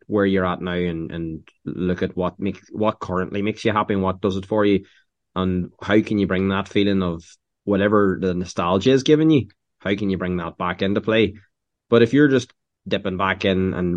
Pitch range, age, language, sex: 90-105 Hz, 20-39, English, male